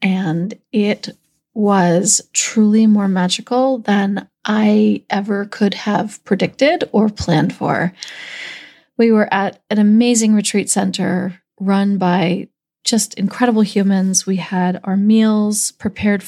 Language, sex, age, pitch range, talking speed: English, female, 30-49, 190-220 Hz, 120 wpm